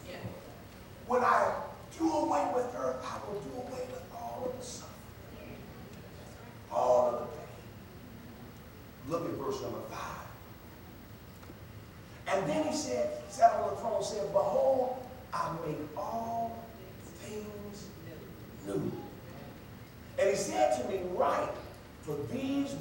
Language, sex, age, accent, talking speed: English, male, 40-59, American, 130 wpm